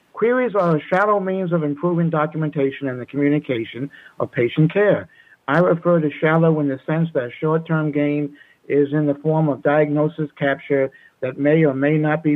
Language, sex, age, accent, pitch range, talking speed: English, male, 60-79, American, 140-165 Hz, 180 wpm